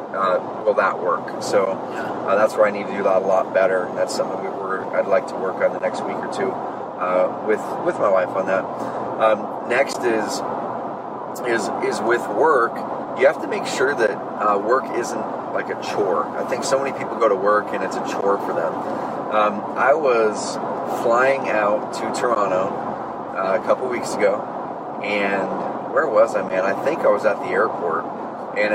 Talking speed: 200 wpm